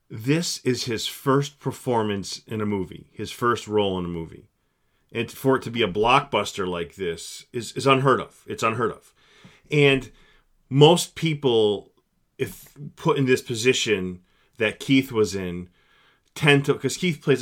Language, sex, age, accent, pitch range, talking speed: English, male, 30-49, American, 110-140 Hz, 160 wpm